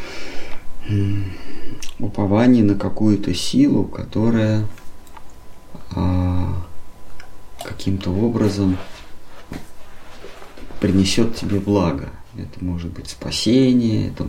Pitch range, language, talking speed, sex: 90-110 Hz, Russian, 65 wpm, male